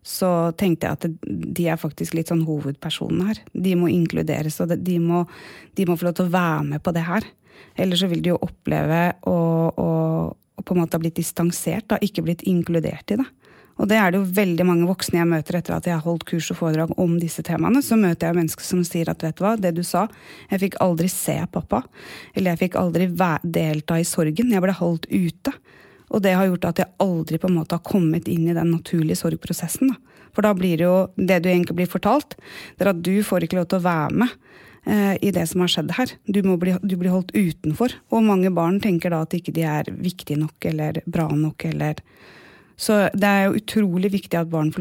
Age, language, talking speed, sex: 30-49, English, 225 wpm, female